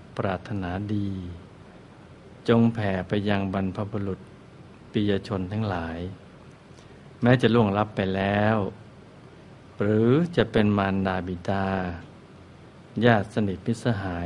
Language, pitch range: Thai, 100-120 Hz